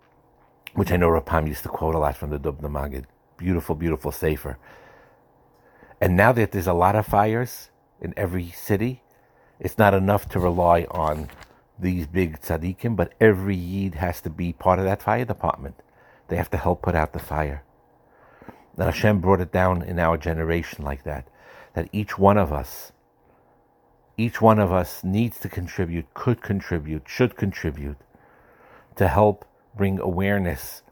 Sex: male